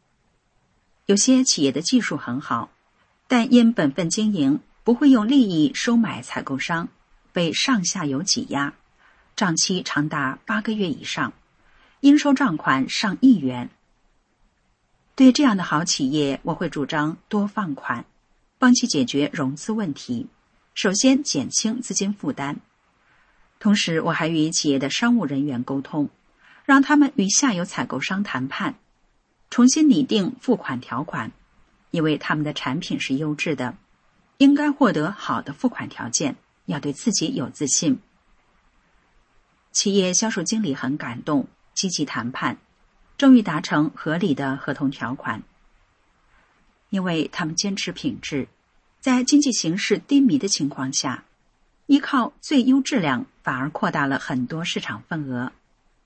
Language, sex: English, female